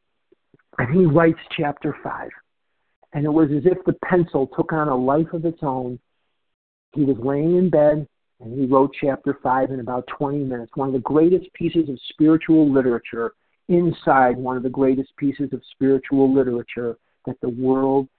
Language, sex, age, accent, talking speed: English, male, 50-69, American, 175 wpm